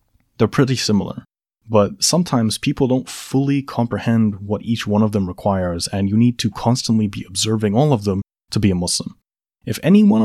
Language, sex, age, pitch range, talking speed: English, male, 20-39, 100-125 Hz, 185 wpm